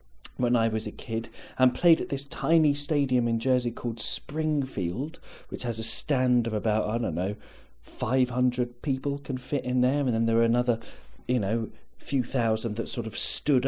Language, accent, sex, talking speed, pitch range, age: English, British, male, 190 wpm, 120-160 Hz, 40-59